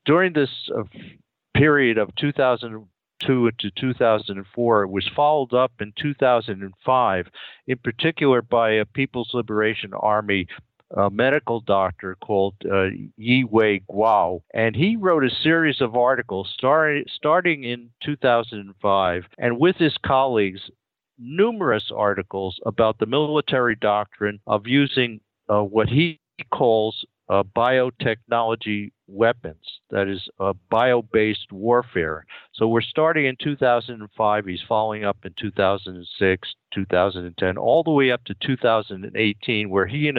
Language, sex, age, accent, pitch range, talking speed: English, male, 50-69, American, 100-125 Hz, 120 wpm